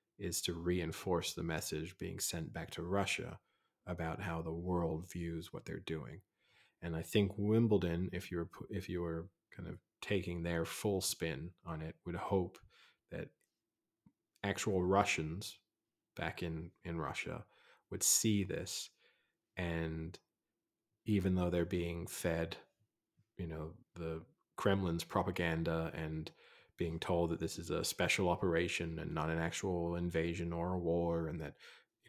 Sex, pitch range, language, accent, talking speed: male, 80-95 Hz, English, American, 150 wpm